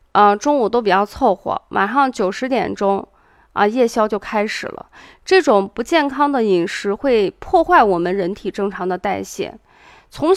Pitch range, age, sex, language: 200-285 Hz, 20-39, female, Chinese